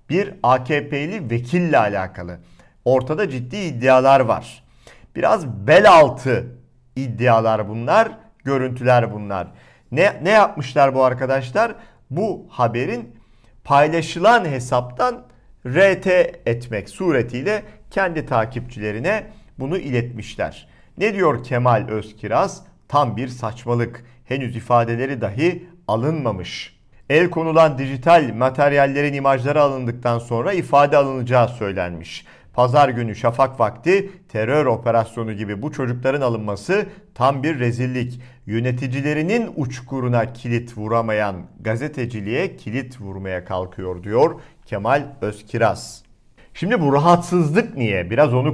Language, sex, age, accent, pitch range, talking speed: Turkish, male, 50-69, native, 115-145 Hz, 100 wpm